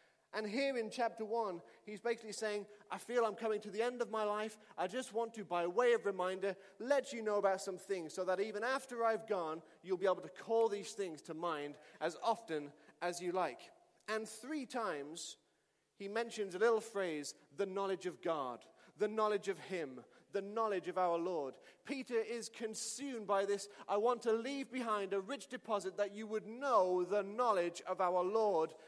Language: English